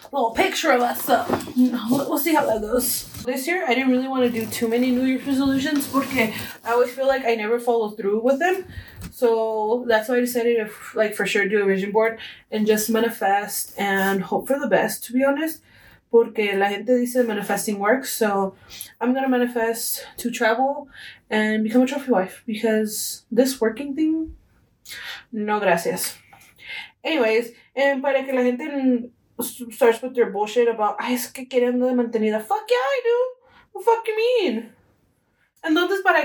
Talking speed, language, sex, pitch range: 180 wpm, English, female, 215-265 Hz